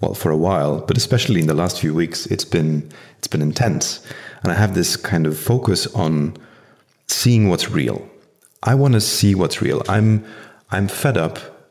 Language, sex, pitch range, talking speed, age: English, male, 80-110 Hz, 190 wpm, 40-59